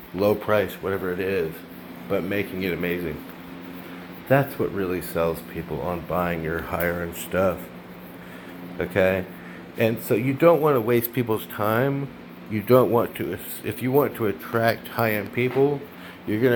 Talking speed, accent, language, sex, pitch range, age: 155 wpm, American, English, male, 90-135 Hz, 50-69